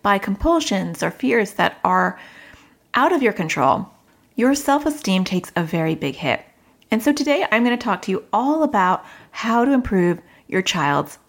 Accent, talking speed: American, 175 wpm